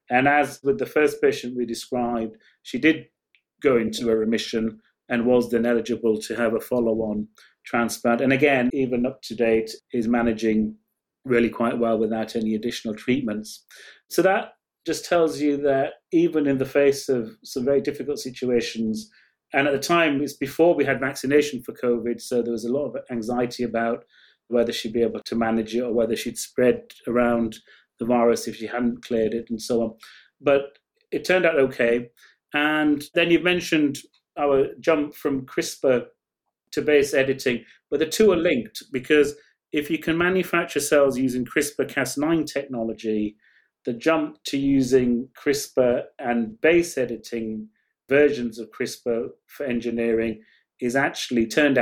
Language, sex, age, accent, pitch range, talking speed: English, male, 30-49, British, 115-145 Hz, 160 wpm